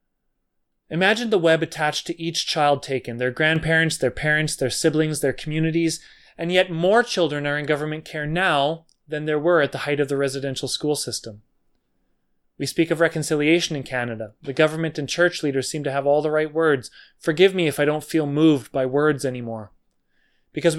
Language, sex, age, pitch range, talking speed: English, male, 30-49, 135-165 Hz, 190 wpm